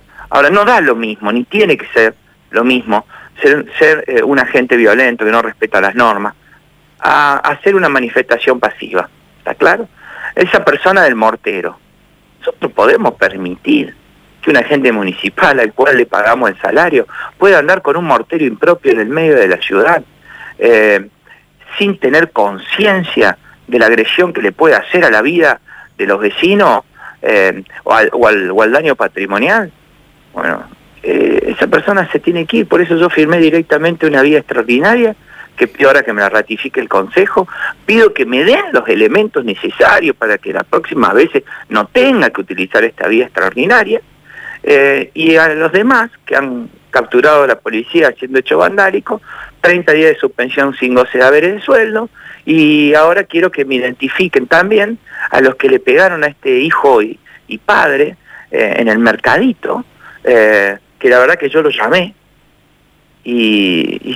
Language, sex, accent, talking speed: Spanish, male, Argentinian, 170 wpm